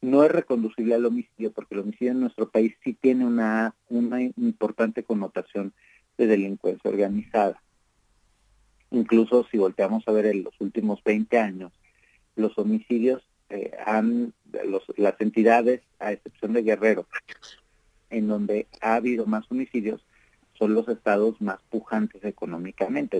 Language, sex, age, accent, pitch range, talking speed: English, male, 40-59, Mexican, 105-125 Hz, 135 wpm